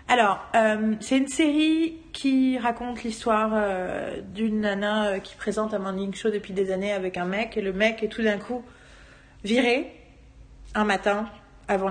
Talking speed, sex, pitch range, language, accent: 170 wpm, female, 185-220 Hz, French, French